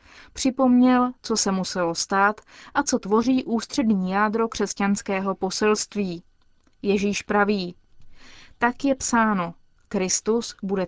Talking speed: 105 wpm